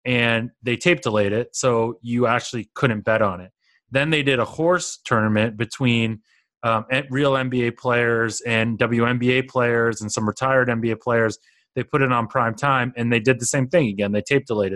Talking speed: 185 wpm